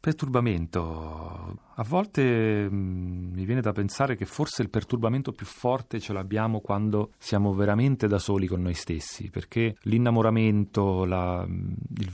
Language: Italian